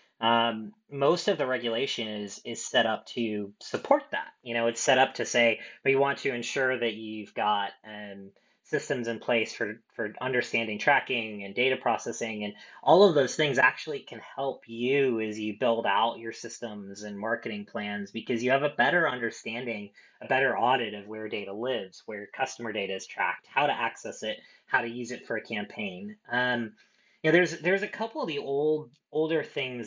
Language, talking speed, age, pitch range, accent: English, 195 wpm, 20-39, 105-130 Hz, American